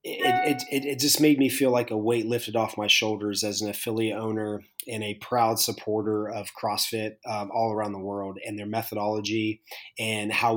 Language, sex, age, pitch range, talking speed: English, male, 30-49, 105-125 Hz, 200 wpm